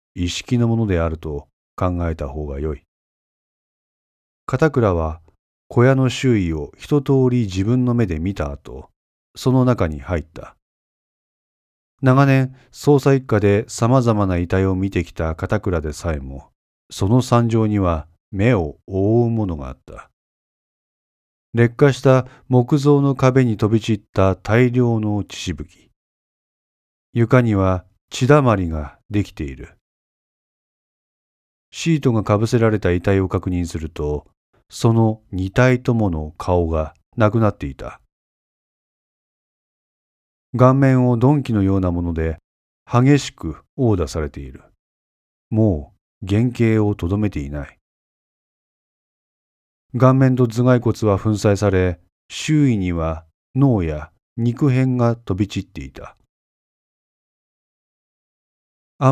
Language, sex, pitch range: Japanese, male, 80-120 Hz